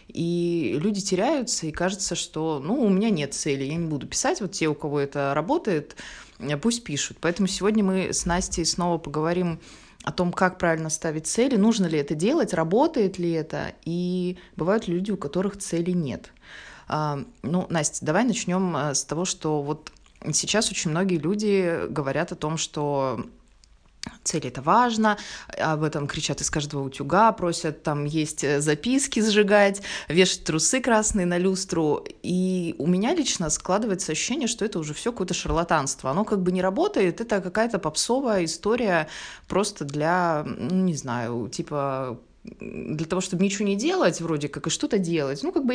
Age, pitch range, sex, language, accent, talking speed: 20-39, 155-200 Hz, female, Russian, native, 165 wpm